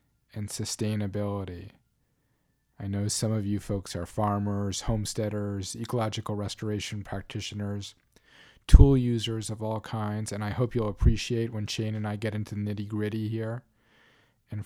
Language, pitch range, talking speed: English, 100-120 Hz, 145 wpm